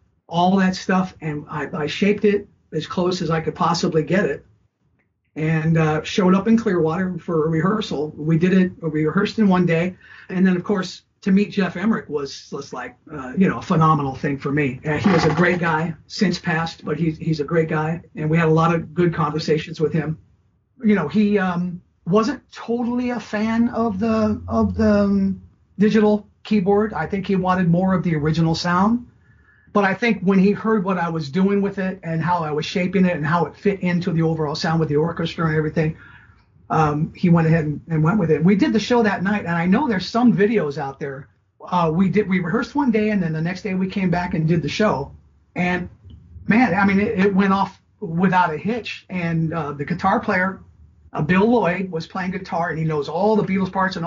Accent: American